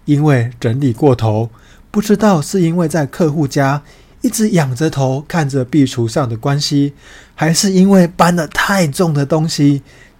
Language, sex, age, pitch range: Chinese, male, 20-39, 120-160 Hz